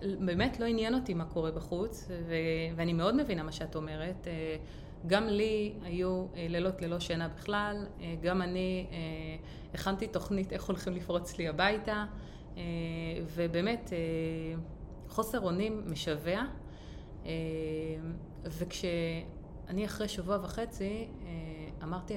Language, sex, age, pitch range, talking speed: Hebrew, female, 30-49, 165-200 Hz, 105 wpm